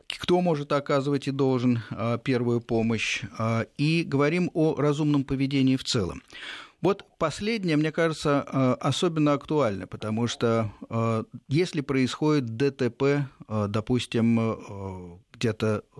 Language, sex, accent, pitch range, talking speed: Russian, male, native, 105-140 Hz, 100 wpm